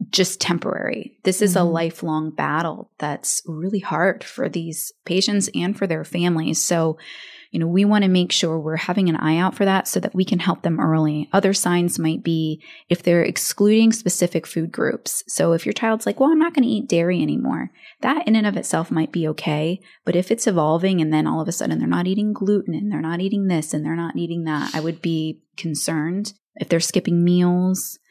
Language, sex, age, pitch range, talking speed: English, female, 20-39, 160-195 Hz, 220 wpm